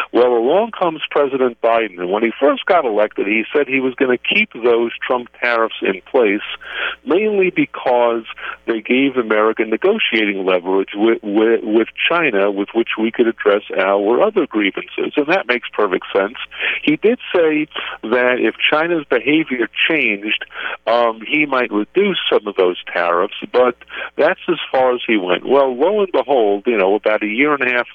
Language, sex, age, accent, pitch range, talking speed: English, male, 50-69, American, 110-150 Hz, 170 wpm